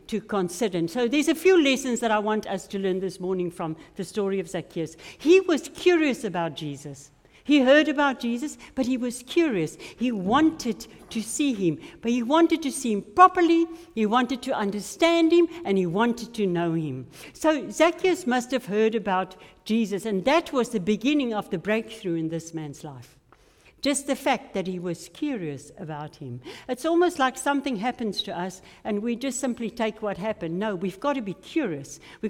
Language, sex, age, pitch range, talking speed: English, female, 60-79, 180-270 Hz, 195 wpm